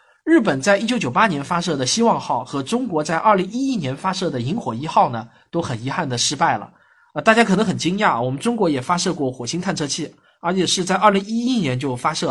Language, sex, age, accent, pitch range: Chinese, male, 20-39, native, 135-190 Hz